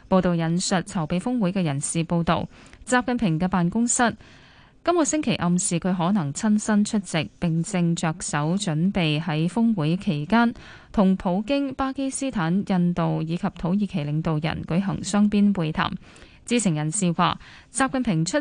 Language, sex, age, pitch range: Chinese, female, 10-29, 170-225 Hz